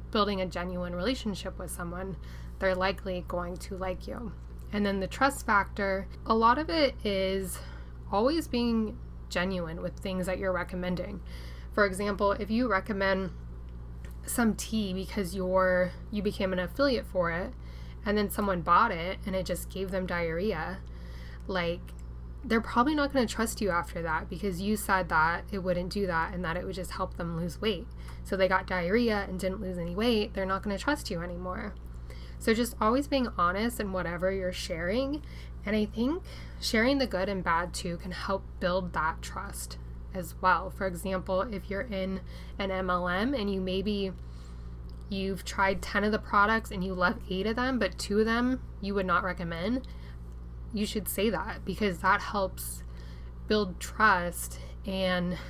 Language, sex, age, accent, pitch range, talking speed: English, female, 10-29, American, 170-205 Hz, 175 wpm